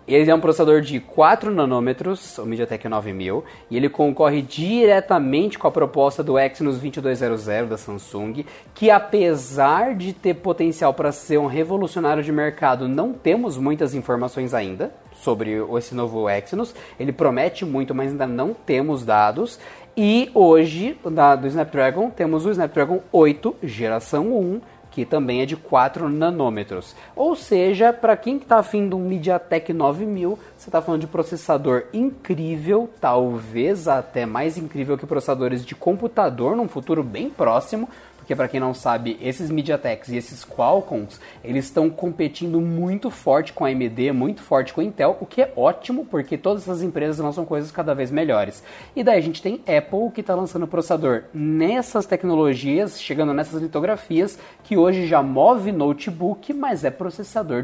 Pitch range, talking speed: 135-190 Hz, 160 wpm